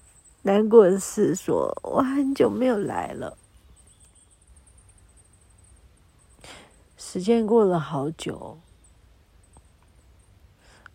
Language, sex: Chinese, female